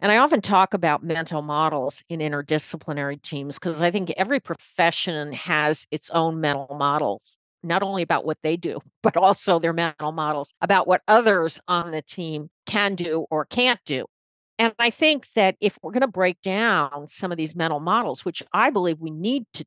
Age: 50-69